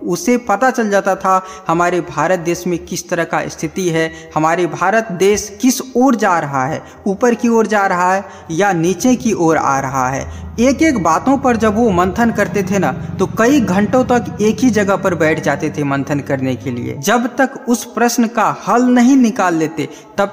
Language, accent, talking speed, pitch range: Hindi, native, 205 wpm, 160-220 Hz